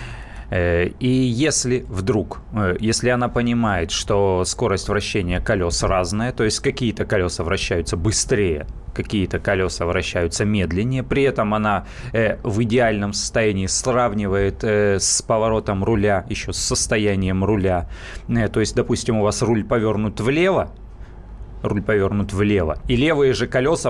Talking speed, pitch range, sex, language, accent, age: 125 wpm, 100-120 Hz, male, Russian, native, 30-49